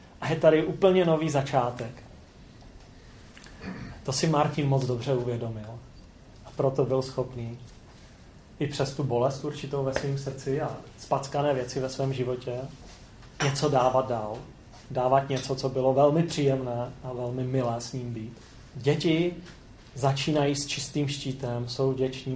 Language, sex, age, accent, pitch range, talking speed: Czech, male, 30-49, native, 125-150 Hz, 140 wpm